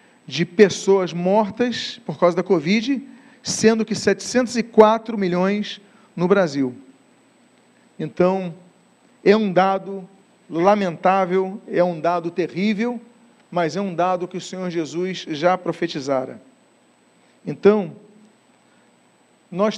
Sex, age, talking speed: male, 40-59, 105 wpm